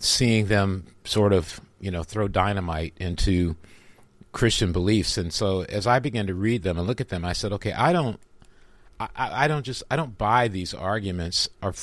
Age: 50-69